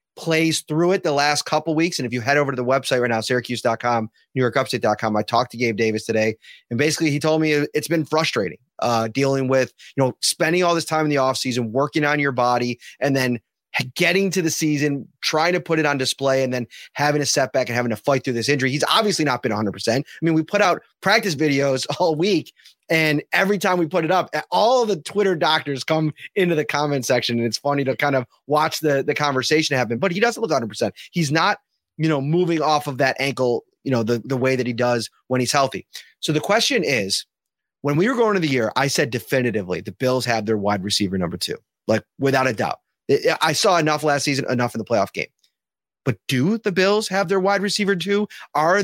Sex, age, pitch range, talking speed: male, 30-49, 125-165 Hz, 230 wpm